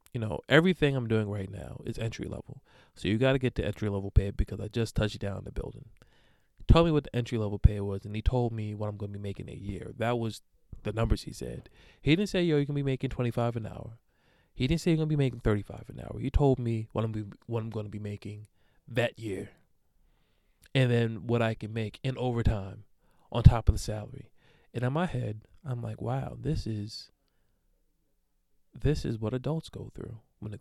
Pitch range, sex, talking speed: 105-140 Hz, male, 230 wpm